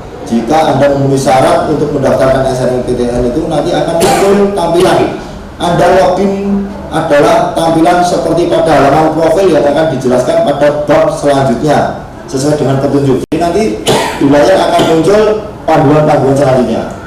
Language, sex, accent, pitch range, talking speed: Indonesian, male, native, 130-175 Hz, 130 wpm